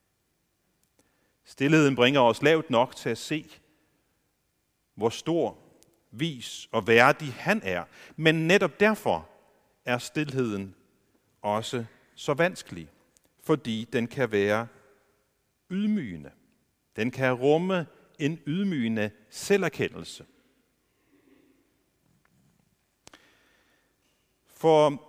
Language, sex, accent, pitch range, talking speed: Danish, male, native, 115-160 Hz, 85 wpm